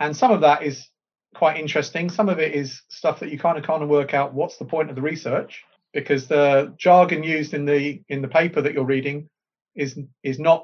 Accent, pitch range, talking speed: British, 145-175 Hz, 220 wpm